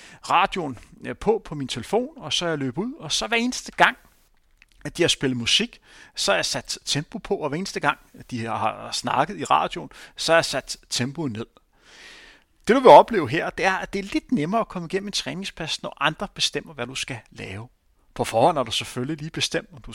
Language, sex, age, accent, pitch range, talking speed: Danish, male, 30-49, native, 120-170 Hz, 225 wpm